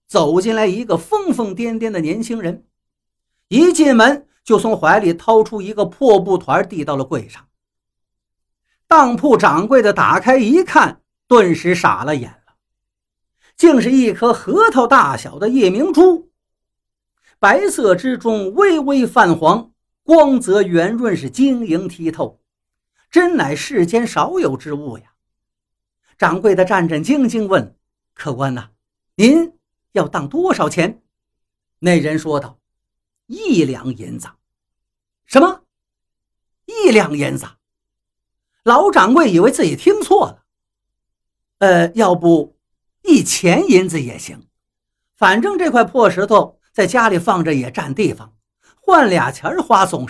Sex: male